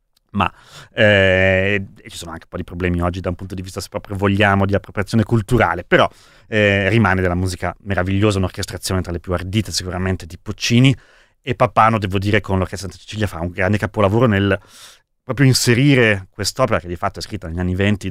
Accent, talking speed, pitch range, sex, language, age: native, 200 wpm, 95-110 Hz, male, Italian, 30-49